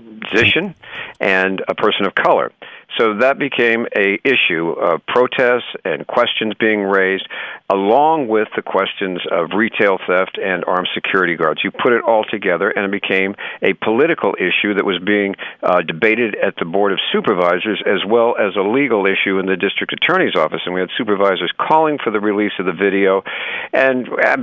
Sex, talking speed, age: male, 180 wpm, 50-69